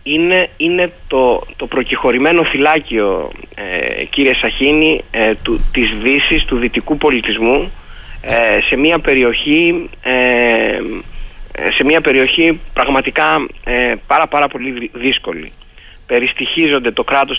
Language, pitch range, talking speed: Greek, 125-160 Hz, 105 wpm